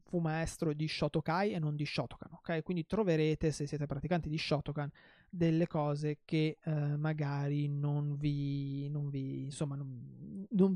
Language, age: Italian, 20-39